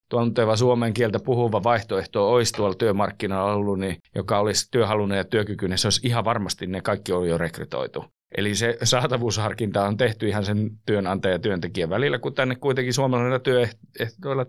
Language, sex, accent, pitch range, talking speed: Finnish, male, native, 100-120 Hz, 155 wpm